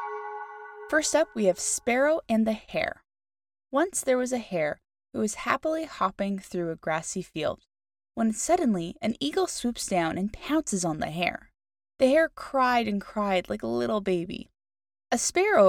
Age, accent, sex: 10-29, American, female